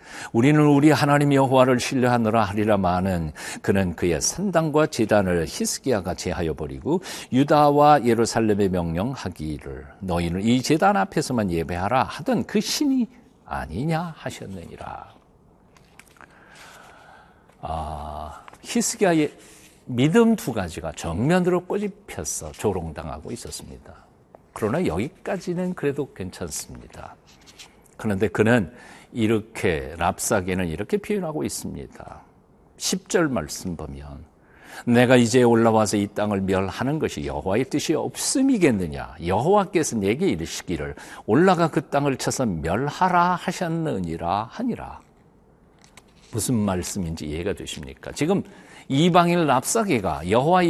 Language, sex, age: Korean, male, 60-79